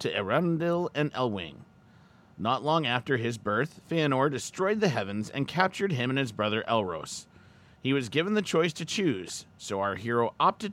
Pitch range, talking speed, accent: 115-170 Hz, 175 wpm, American